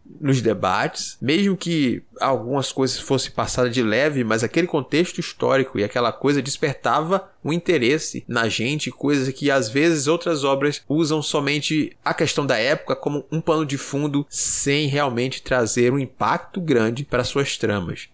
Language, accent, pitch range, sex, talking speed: Portuguese, Brazilian, 130-165 Hz, male, 160 wpm